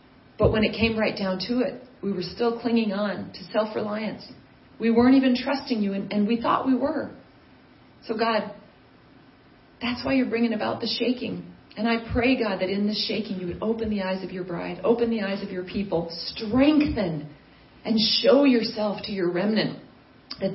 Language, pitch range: English, 185-230 Hz